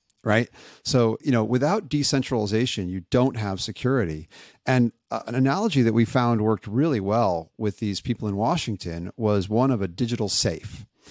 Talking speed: 160 wpm